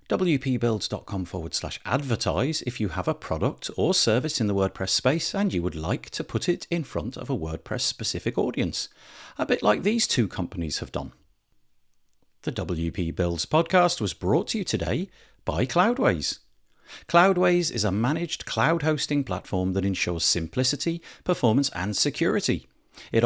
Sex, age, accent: male, 50-69, British